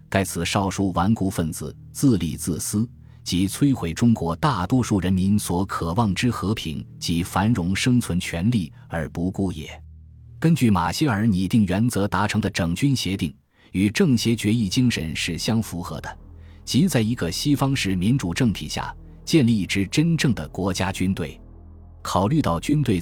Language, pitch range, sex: Chinese, 85-115 Hz, male